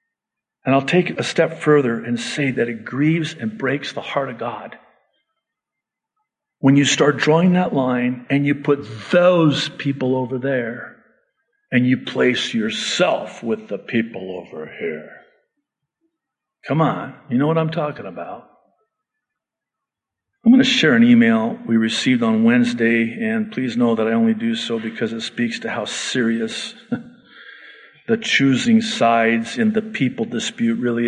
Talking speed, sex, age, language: 155 wpm, male, 50-69, English